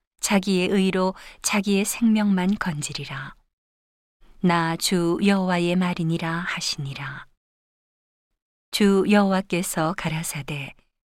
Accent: native